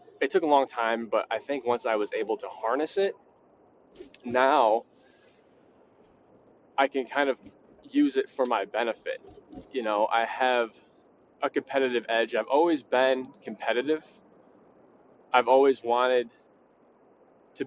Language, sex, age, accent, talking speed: English, male, 20-39, American, 135 wpm